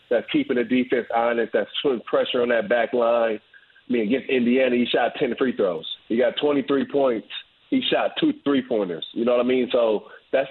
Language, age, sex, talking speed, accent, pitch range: English, 40-59, male, 205 wpm, American, 115-140 Hz